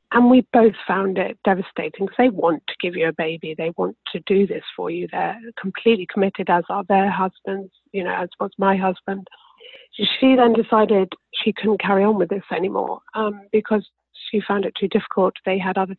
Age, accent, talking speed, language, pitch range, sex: 40-59, British, 200 wpm, English, 190-230 Hz, female